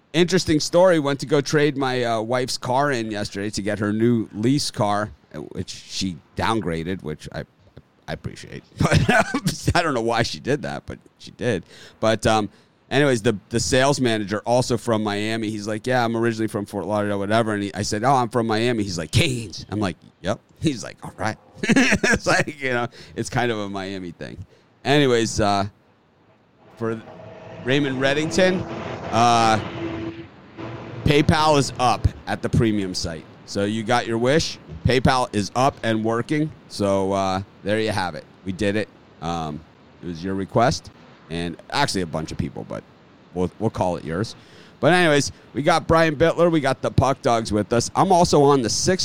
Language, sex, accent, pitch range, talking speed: English, male, American, 100-130 Hz, 185 wpm